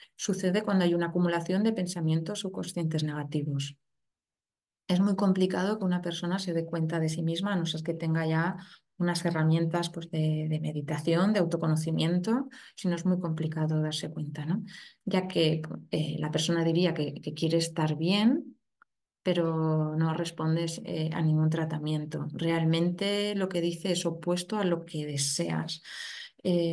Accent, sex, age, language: Spanish, female, 20-39, Spanish